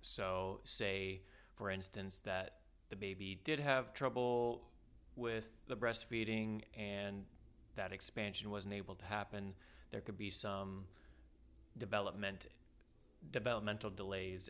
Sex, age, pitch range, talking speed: male, 20-39, 95-105 Hz, 110 wpm